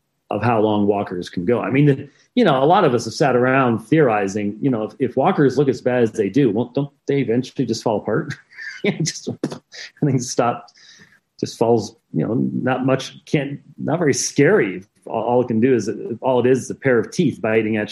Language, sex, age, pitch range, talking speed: English, male, 40-59, 115-145 Hz, 225 wpm